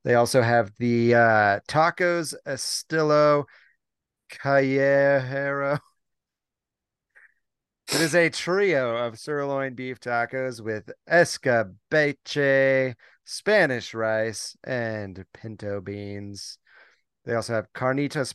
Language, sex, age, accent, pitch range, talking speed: English, male, 30-49, American, 105-140 Hz, 90 wpm